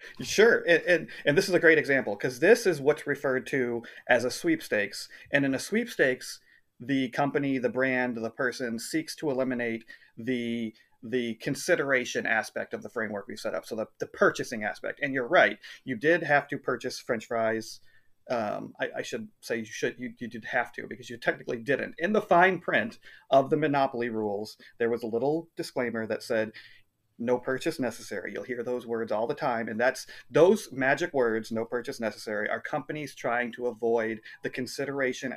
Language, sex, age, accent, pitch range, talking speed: English, male, 30-49, American, 115-145 Hz, 190 wpm